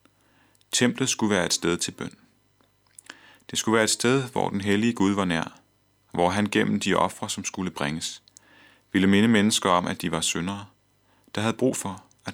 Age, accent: 30-49, native